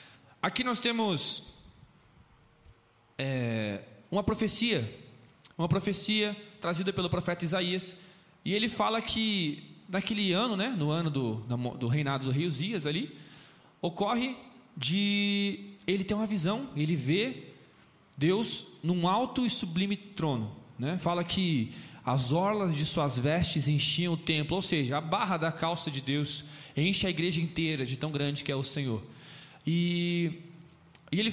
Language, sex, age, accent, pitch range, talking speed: Portuguese, male, 20-39, Brazilian, 150-205 Hz, 140 wpm